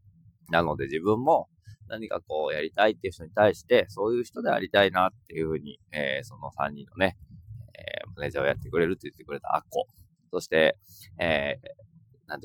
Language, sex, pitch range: Japanese, male, 90-135 Hz